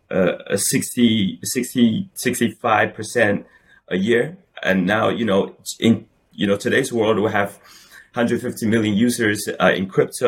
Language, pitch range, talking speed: English, 95-120 Hz, 140 wpm